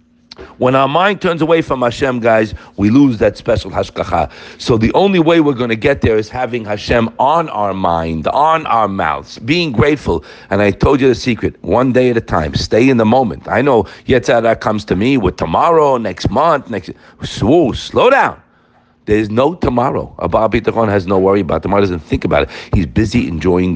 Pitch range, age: 95-125 Hz, 50-69